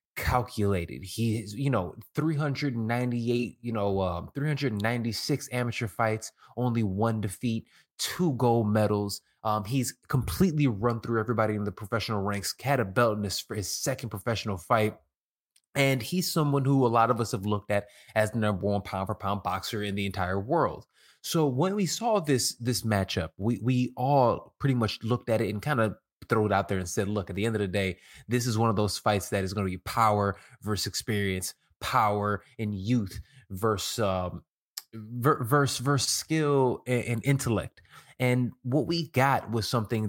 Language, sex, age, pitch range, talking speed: English, male, 20-39, 105-130 Hz, 185 wpm